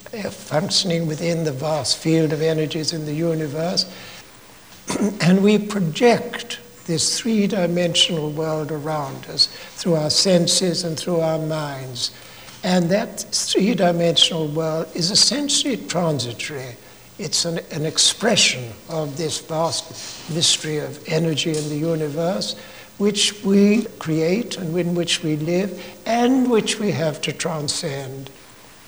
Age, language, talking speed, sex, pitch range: 60-79, English, 125 wpm, male, 150-180 Hz